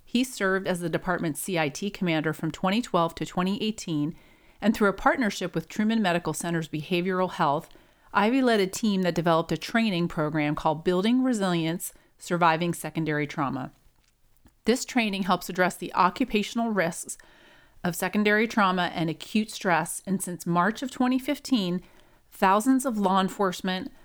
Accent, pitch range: American, 165-210 Hz